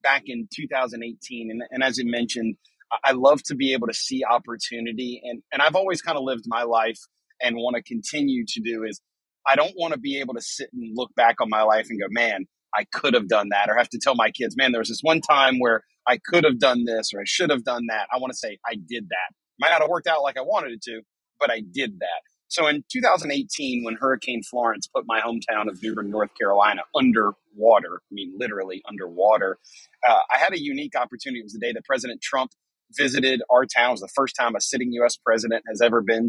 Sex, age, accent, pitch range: male, 30-49, American, 115-145 Hz